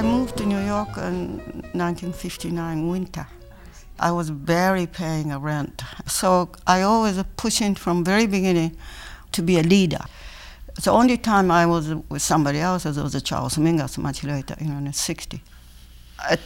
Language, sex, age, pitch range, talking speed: English, female, 60-79, 150-190 Hz, 155 wpm